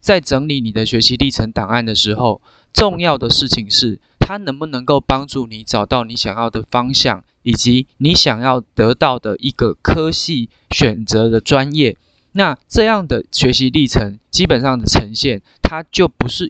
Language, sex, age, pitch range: Chinese, male, 20-39, 120-155 Hz